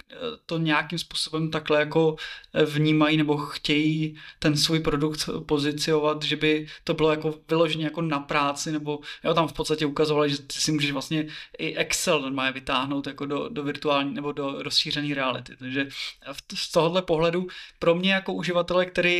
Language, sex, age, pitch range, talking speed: Czech, male, 20-39, 150-165 Hz, 165 wpm